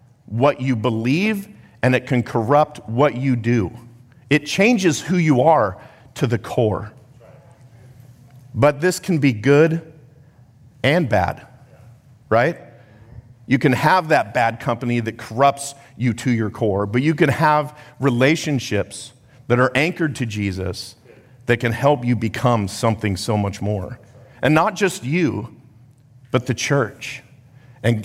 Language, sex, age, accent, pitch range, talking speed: English, male, 50-69, American, 115-140 Hz, 140 wpm